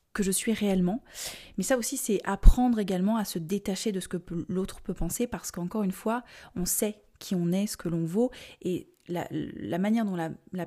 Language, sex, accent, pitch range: French, female, French, 180-215 Hz